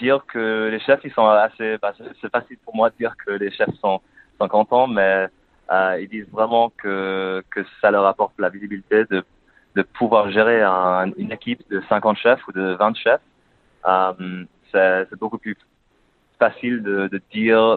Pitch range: 95-110 Hz